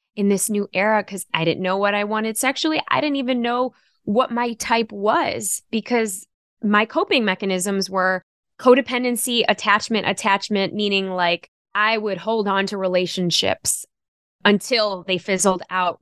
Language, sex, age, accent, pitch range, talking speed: English, female, 10-29, American, 180-230 Hz, 150 wpm